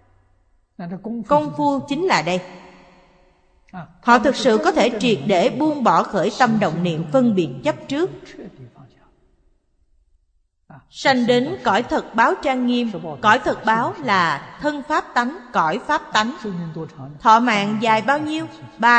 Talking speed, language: 140 wpm, Vietnamese